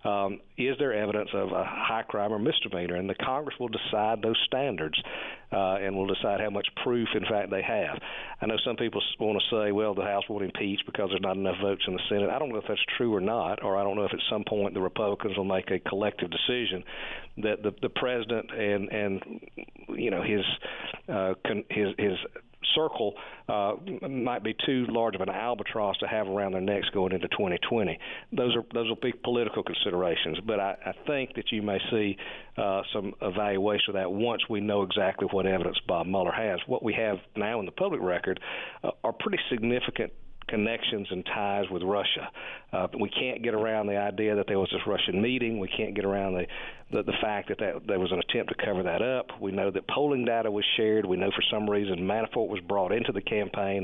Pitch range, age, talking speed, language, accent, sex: 95-115 Hz, 50-69, 220 wpm, English, American, male